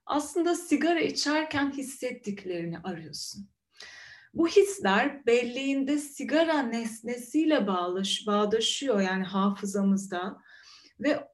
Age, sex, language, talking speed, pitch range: 30-49, female, Turkish, 80 wpm, 195-290 Hz